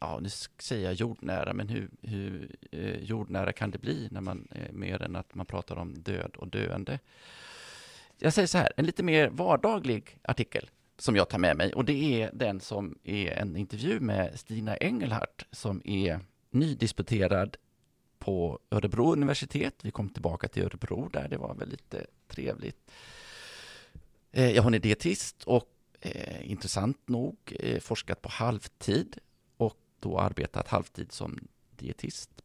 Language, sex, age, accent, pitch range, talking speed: Swedish, male, 30-49, native, 95-125 Hz, 150 wpm